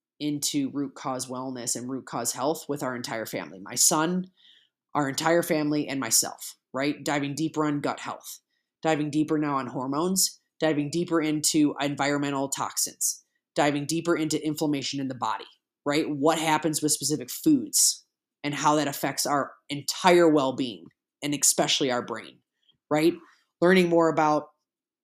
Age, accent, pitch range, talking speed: 20-39, American, 140-165 Hz, 155 wpm